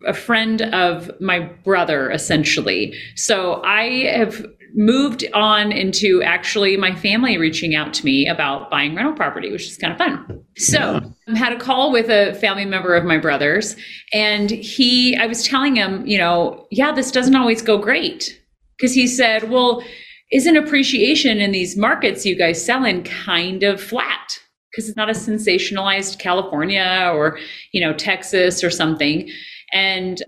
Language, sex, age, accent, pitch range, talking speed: English, female, 40-59, American, 190-250 Hz, 165 wpm